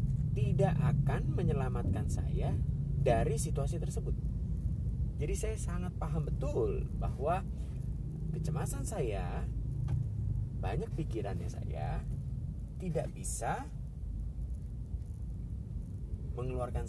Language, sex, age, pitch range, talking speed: Indonesian, male, 30-49, 110-140 Hz, 75 wpm